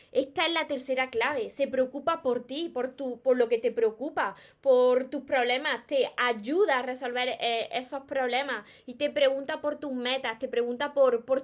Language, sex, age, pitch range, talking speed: Spanish, female, 20-39, 240-305 Hz, 185 wpm